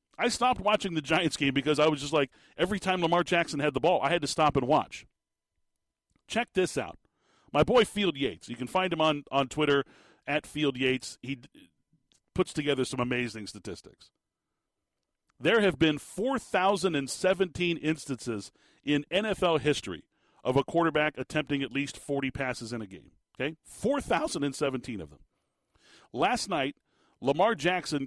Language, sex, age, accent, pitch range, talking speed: English, male, 40-59, American, 135-175 Hz, 160 wpm